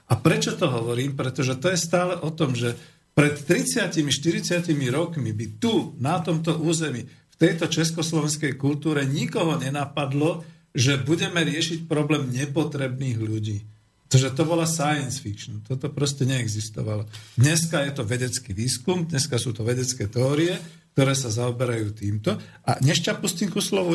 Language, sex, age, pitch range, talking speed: Slovak, male, 50-69, 125-160 Hz, 145 wpm